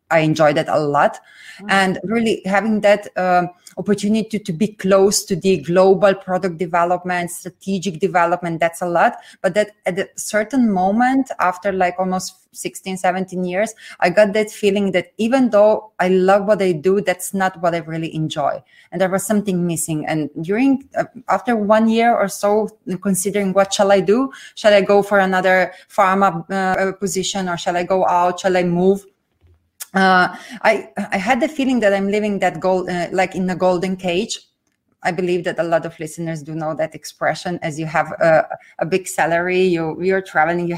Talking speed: 190 wpm